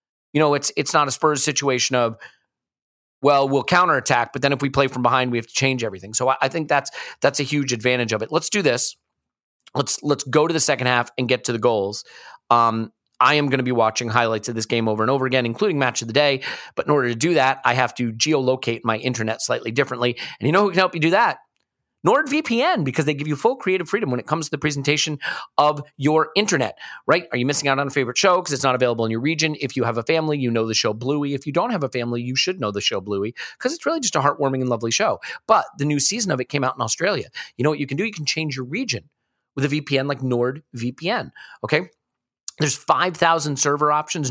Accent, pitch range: American, 125-155 Hz